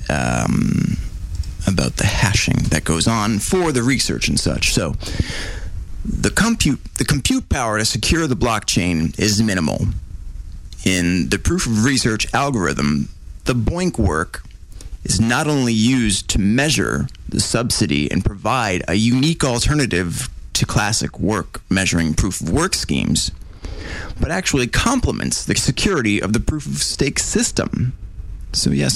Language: English